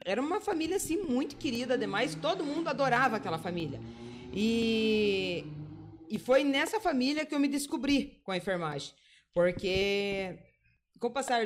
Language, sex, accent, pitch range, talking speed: Portuguese, female, Brazilian, 200-275 Hz, 145 wpm